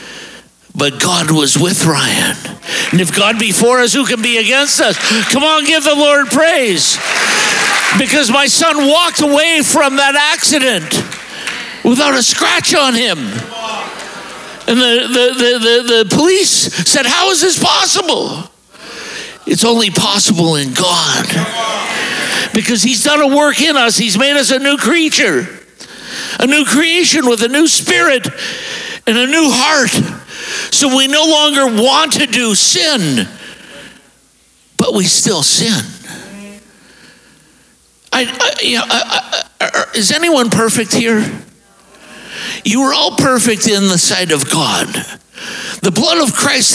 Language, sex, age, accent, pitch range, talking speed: English, male, 60-79, American, 210-285 Hz, 135 wpm